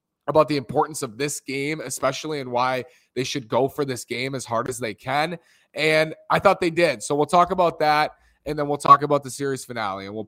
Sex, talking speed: male, 235 wpm